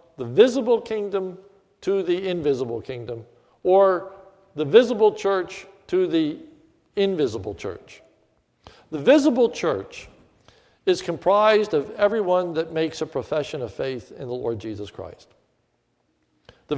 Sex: male